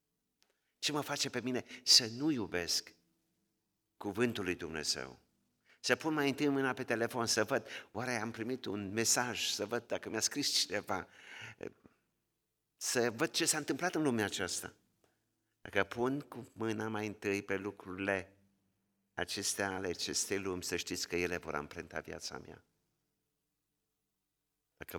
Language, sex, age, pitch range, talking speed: Romanian, male, 50-69, 100-135 Hz, 145 wpm